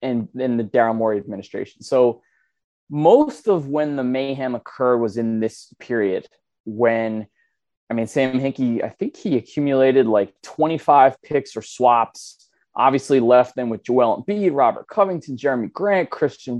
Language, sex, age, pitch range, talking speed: English, male, 20-39, 120-150 Hz, 155 wpm